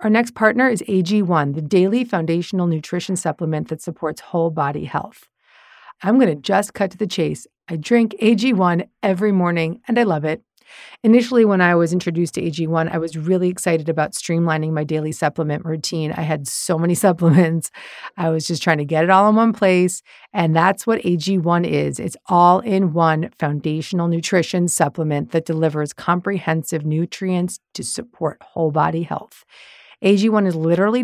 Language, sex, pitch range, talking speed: English, female, 165-205 Hz, 170 wpm